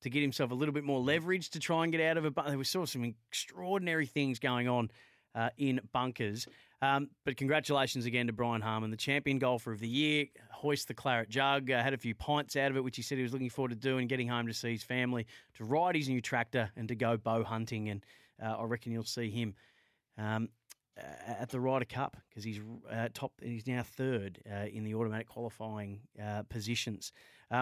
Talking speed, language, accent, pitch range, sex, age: 225 wpm, English, Australian, 115-135 Hz, male, 30-49